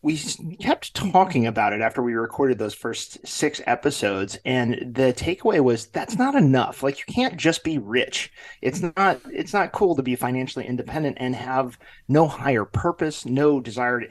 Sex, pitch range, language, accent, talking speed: male, 120-145 Hz, English, American, 180 wpm